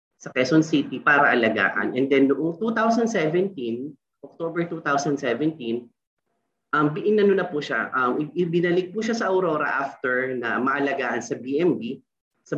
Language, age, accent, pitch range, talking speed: Filipino, 30-49, native, 125-170 Hz, 135 wpm